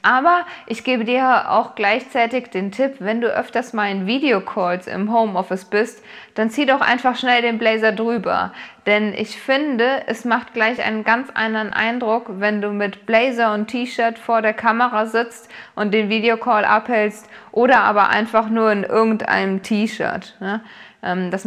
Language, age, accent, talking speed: German, 20-39, German, 160 wpm